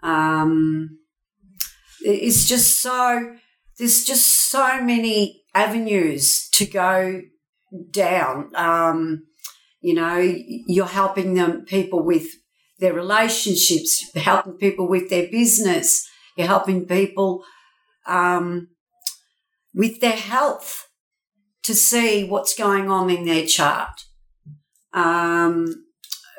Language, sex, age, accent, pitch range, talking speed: English, female, 60-79, Australian, 185-235 Hz, 100 wpm